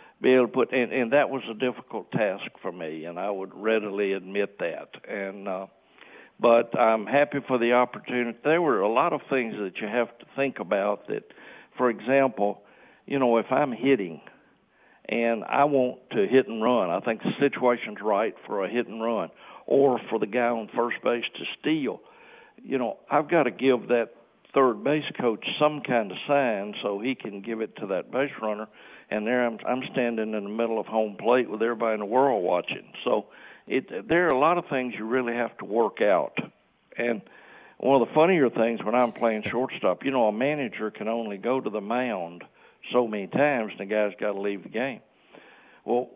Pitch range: 105-130 Hz